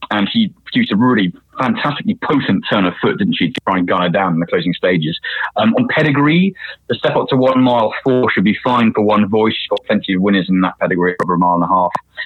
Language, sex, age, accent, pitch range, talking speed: English, male, 30-49, British, 95-135 Hz, 255 wpm